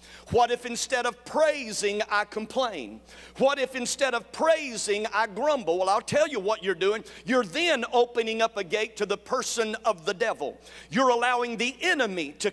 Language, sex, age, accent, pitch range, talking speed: English, male, 50-69, American, 205-285 Hz, 180 wpm